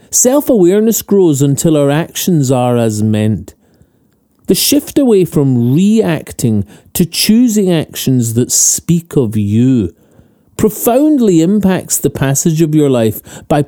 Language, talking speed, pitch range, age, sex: English, 125 wpm, 120-175 Hz, 40-59, male